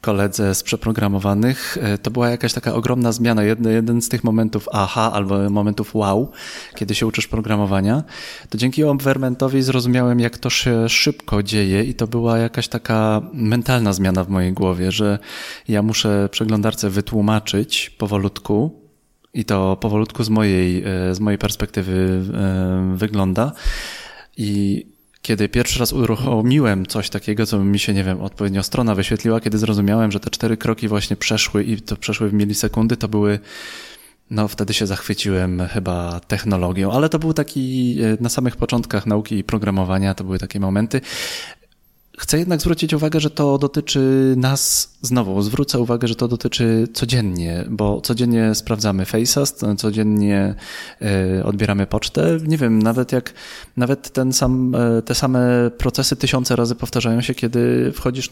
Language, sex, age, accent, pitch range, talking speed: Polish, male, 20-39, native, 105-120 Hz, 145 wpm